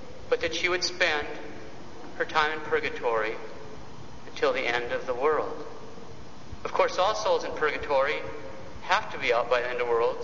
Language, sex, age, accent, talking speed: English, male, 50-69, American, 180 wpm